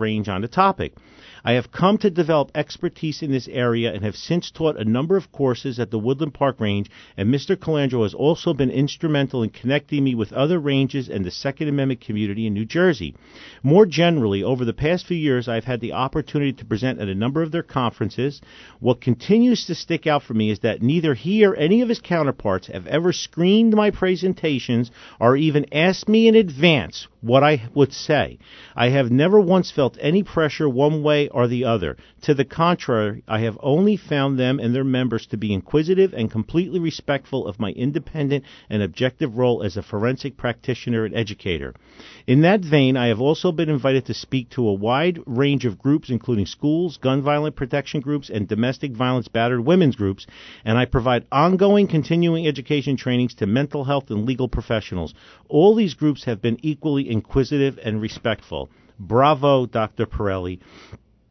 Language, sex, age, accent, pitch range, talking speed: English, male, 50-69, American, 115-155 Hz, 190 wpm